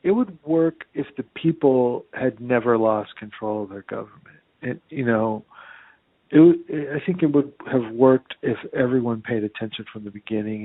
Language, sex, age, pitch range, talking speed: English, male, 50-69, 115-140 Hz, 165 wpm